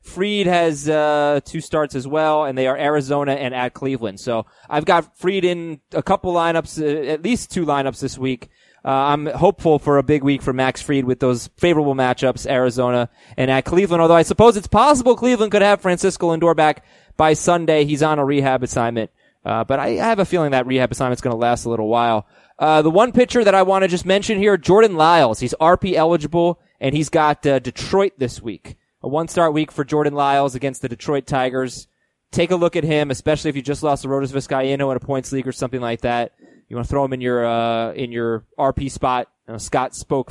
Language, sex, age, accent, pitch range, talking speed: English, male, 20-39, American, 130-170 Hz, 225 wpm